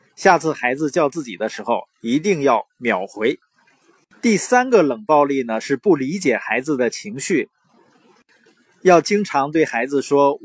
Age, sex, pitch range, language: 20-39, male, 135-200 Hz, Chinese